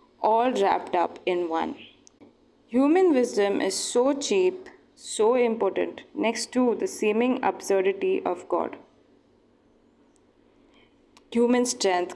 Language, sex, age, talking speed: English, female, 20-39, 105 wpm